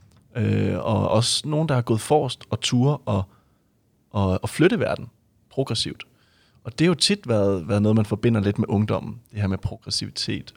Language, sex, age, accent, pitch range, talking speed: Danish, male, 30-49, native, 105-125 Hz, 180 wpm